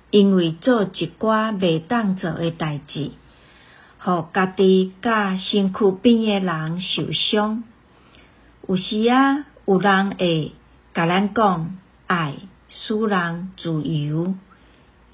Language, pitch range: Chinese, 170-215 Hz